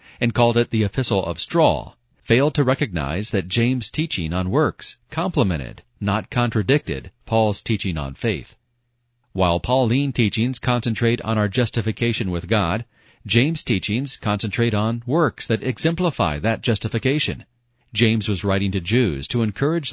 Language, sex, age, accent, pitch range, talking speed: English, male, 40-59, American, 100-125 Hz, 140 wpm